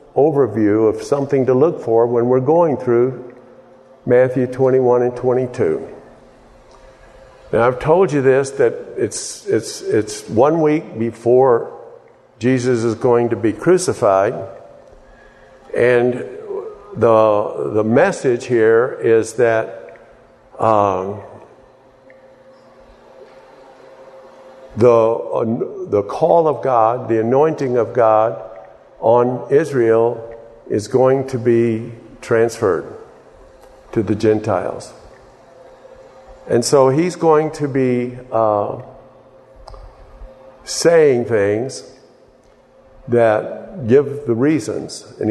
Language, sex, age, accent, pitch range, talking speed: English, male, 50-69, American, 115-155 Hz, 100 wpm